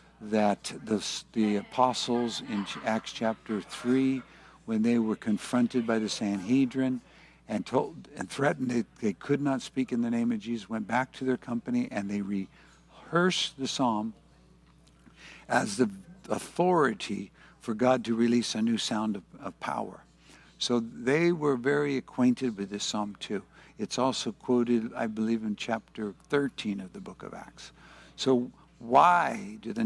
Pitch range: 110-150 Hz